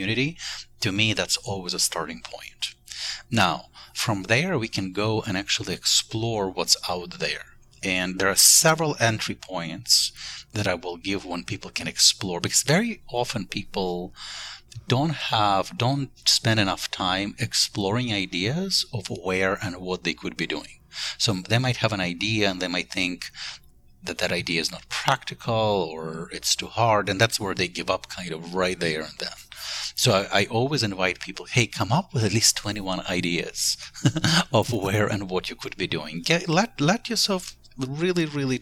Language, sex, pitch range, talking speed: English, male, 95-130 Hz, 175 wpm